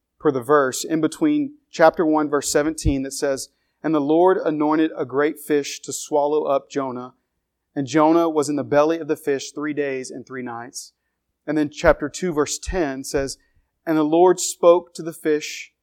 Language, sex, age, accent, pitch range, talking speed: English, male, 40-59, American, 135-160 Hz, 190 wpm